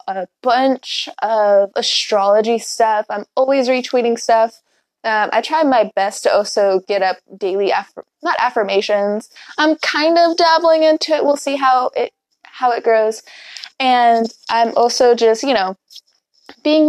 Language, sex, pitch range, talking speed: English, female, 230-315 Hz, 150 wpm